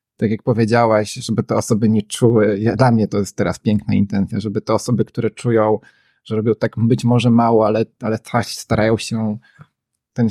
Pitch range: 105-115 Hz